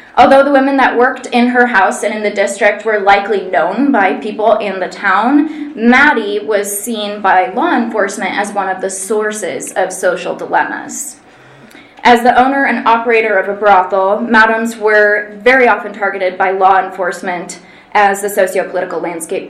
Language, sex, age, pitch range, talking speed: English, female, 20-39, 200-250 Hz, 165 wpm